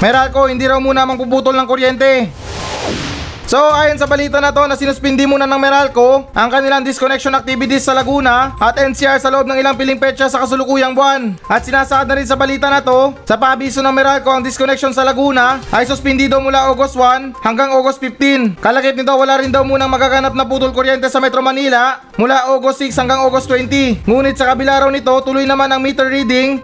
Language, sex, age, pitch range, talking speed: Filipino, male, 20-39, 240-270 Hz, 200 wpm